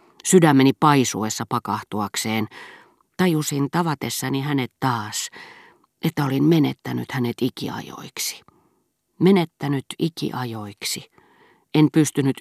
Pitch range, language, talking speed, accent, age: 120-160 Hz, Finnish, 75 wpm, native, 40-59